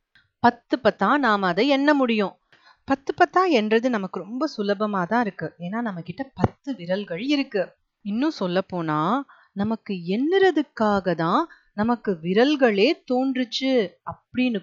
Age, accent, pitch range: 30-49, native, 190-290 Hz